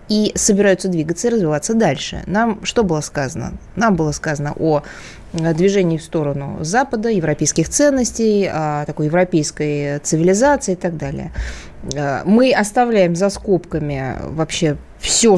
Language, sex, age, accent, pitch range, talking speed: Russian, female, 20-39, native, 165-230 Hz, 125 wpm